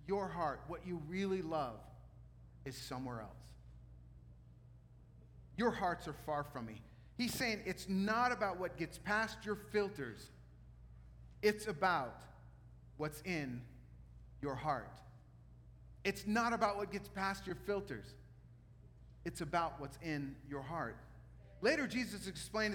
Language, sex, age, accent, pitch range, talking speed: English, male, 40-59, American, 120-200 Hz, 125 wpm